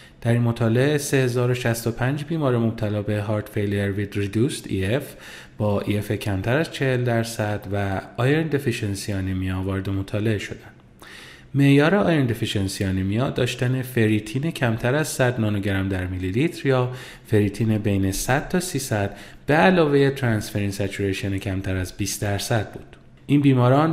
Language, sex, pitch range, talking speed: Persian, male, 100-135 Hz, 140 wpm